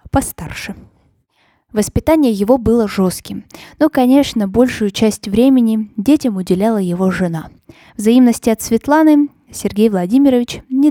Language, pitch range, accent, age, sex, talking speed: Russian, 190-250 Hz, native, 20-39, female, 110 wpm